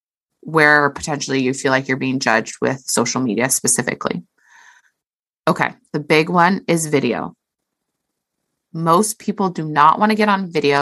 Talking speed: 150 wpm